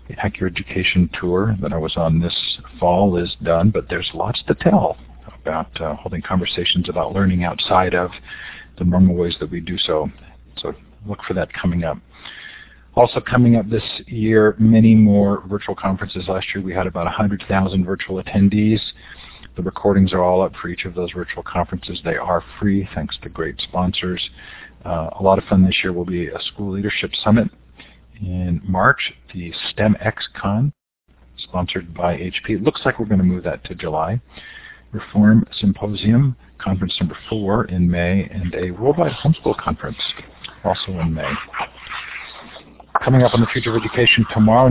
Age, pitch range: 50-69, 90-110 Hz